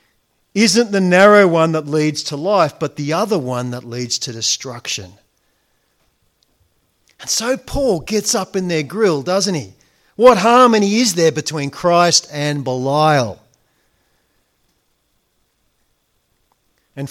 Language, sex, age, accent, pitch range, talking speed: English, male, 40-59, Australian, 155-205 Hz, 125 wpm